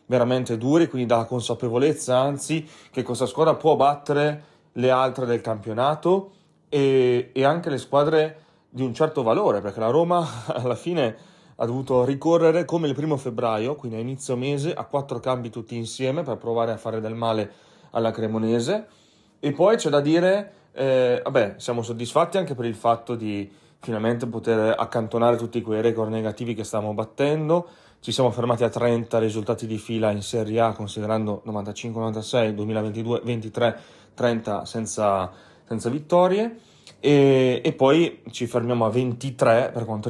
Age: 30-49